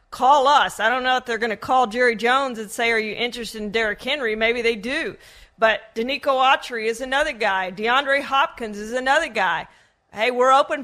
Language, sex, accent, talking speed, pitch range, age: English, female, American, 205 wpm, 220-260 Hz, 40-59